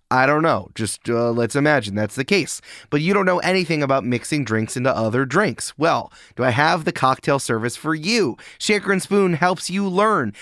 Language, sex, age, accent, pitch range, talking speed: English, male, 30-49, American, 115-160 Hz, 205 wpm